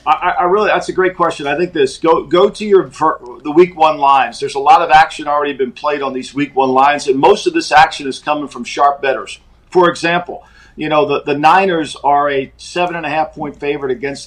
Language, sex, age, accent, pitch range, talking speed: English, male, 50-69, American, 140-180 Hz, 240 wpm